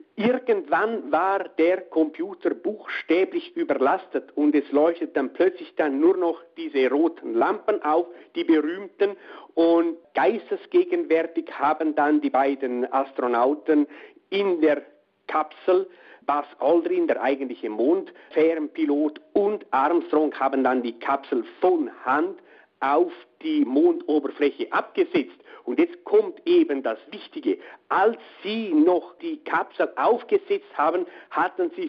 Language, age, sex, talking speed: German, 50-69, male, 120 wpm